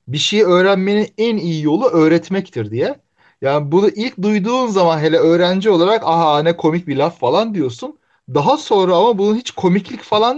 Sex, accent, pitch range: male, native, 140-210 Hz